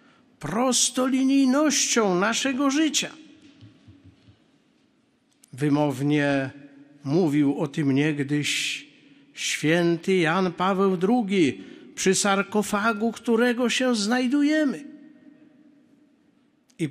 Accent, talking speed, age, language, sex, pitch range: native, 65 wpm, 50-69, Polish, male, 160-250 Hz